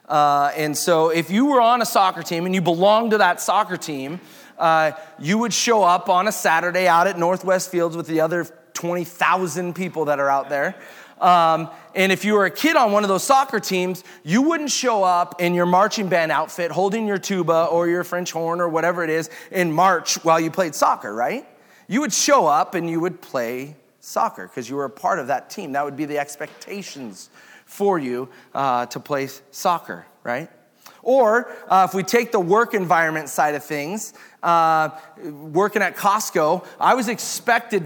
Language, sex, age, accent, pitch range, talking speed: English, male, 30-49, American, 160-190 Hz, 200 wpm